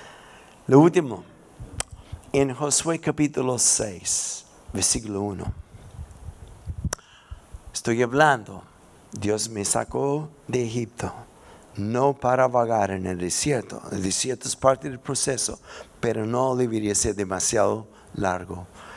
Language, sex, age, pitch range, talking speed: Spanish, male, 50-69, 100-130 Hz, 105 wpm